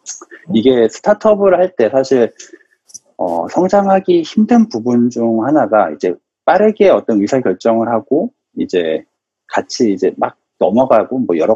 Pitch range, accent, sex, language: 115-190 Hz, native, male, Korean